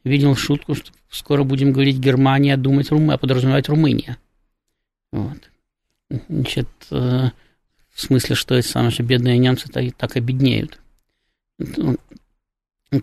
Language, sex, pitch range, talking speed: Russian, male, 125-140 Hz, 110 wpm